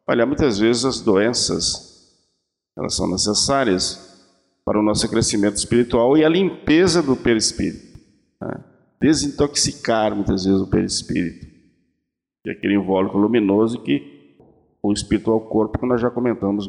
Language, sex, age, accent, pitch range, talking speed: Portuguese, male, 50-69, Brazilian, 110-140 Hz, 135 wpm